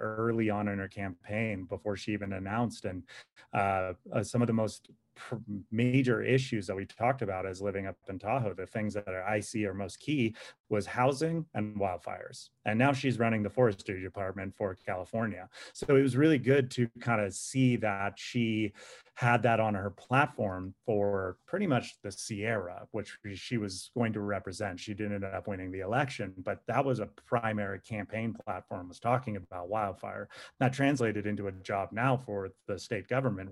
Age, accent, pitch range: 30-49, American, 100-120 Hz